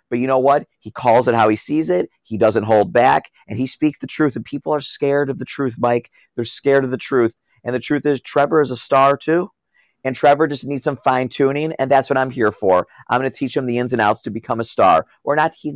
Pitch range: 110-145 Hz